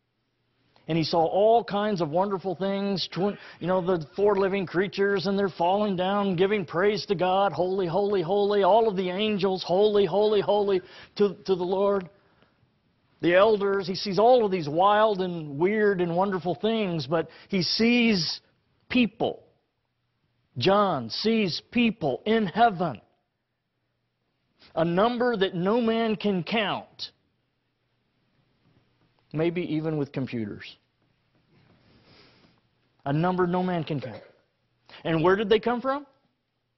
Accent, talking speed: American, 130 wpm